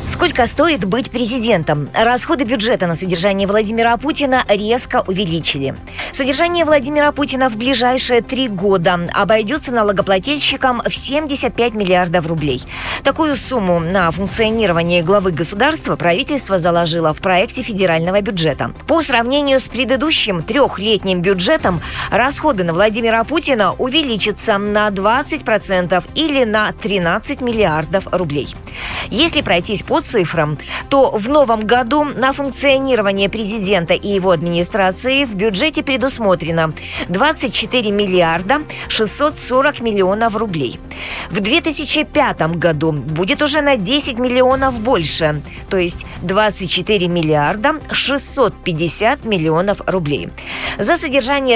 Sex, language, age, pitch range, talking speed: female, Russian, 20-39, 180-265 Hz, 110 wpm